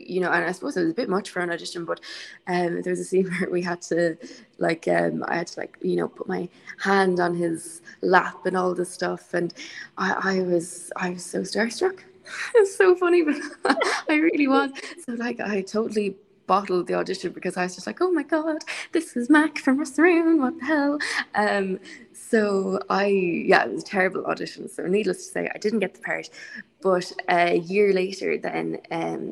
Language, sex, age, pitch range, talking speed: English, female, 20-39, 170-215 Hz, 215 wpm